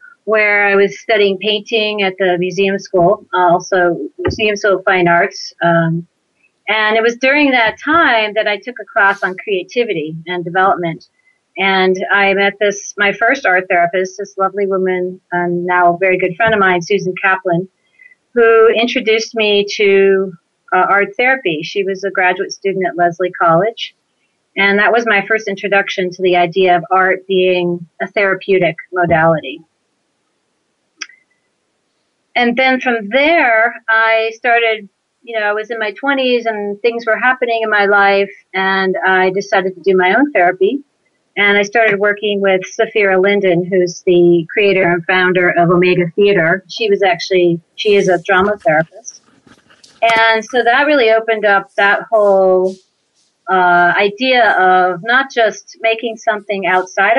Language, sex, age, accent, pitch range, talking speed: English, female, 40-59, American, 185-225 Hz, 155 wpm